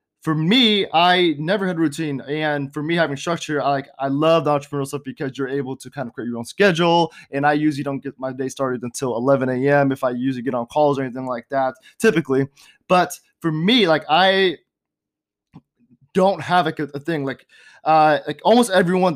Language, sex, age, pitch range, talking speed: English, male, 20-39, 135-160 Hz, 205 wpm